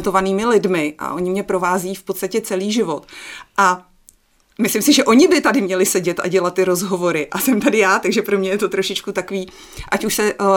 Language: Czech